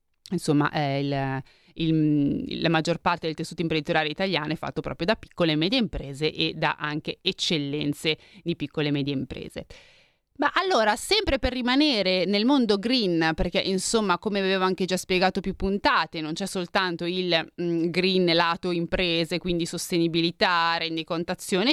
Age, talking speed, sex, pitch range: 30-49, 150 wpm, female, 165-210 Hz